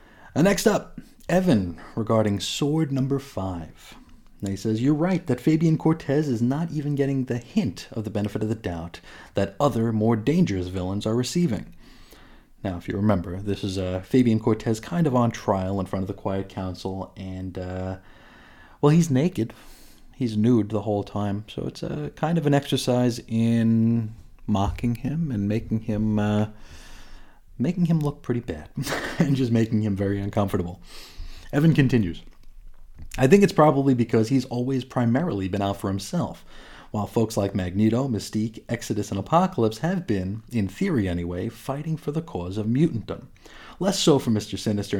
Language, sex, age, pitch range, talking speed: English, male, 30-49, 100-135 Hz, 165 wpm